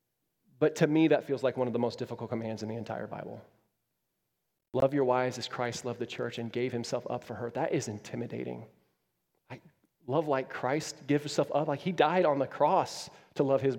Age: 30-49